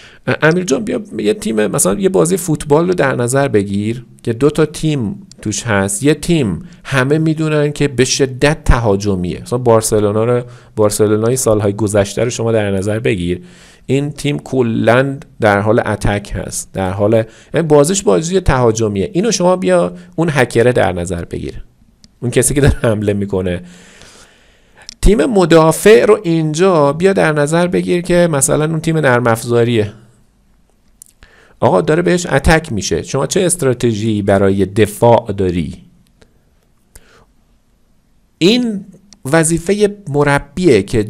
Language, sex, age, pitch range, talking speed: Persian, male, 50-69, 105-150 Hz, 135 wpm